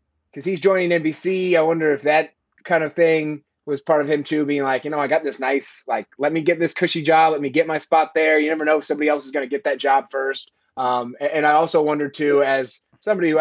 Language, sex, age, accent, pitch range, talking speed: English, male, 20-39, American, 130-160 Hz, 270 wpm